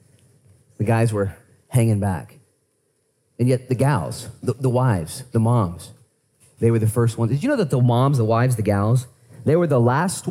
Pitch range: 120-200 Hz